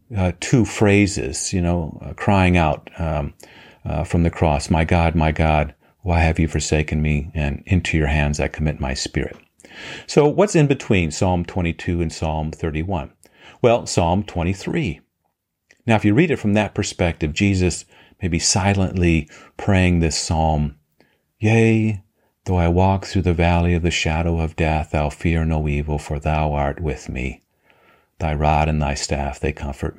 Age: 40-59